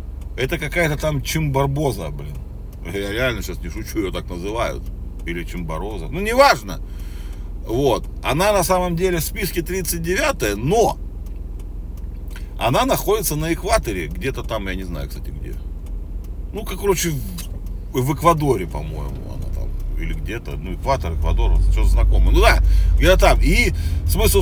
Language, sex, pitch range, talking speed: Russian, male, 75-95 Hz, 145 wpm